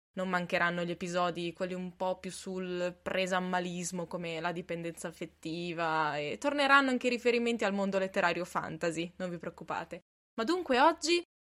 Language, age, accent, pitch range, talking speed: Italian, 20-39, native, 180-245 Hz, 160 wpm